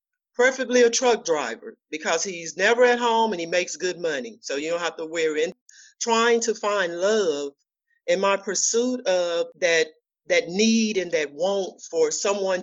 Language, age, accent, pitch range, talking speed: English, 50-69, American, 195-255 Hz, 175 wpm